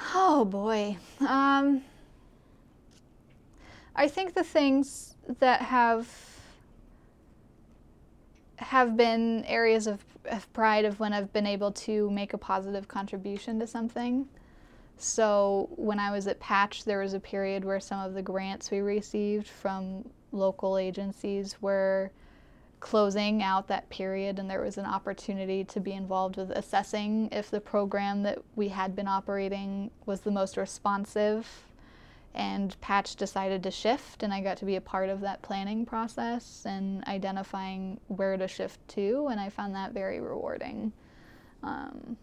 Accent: American